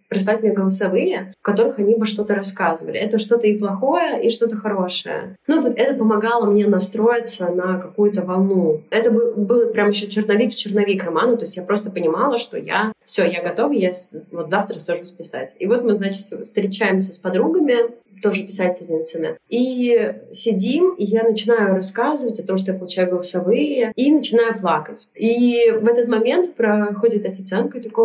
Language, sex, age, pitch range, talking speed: Russian, female, 20-39, 195-235 Hz, 165 wpm